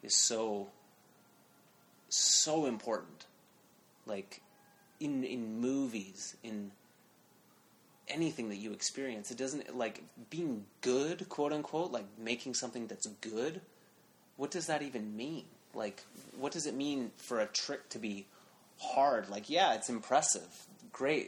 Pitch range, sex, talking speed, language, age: 105-125 Hz, male, 125 wpm, English, 30-49